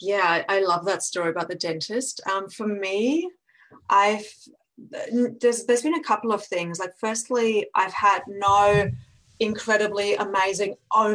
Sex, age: female, 30-49